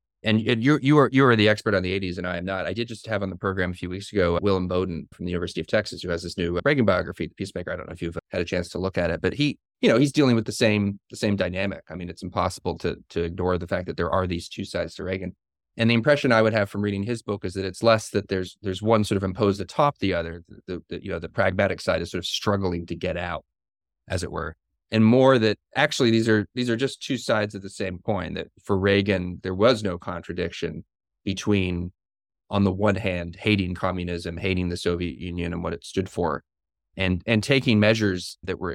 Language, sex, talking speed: English, male, 255 wpm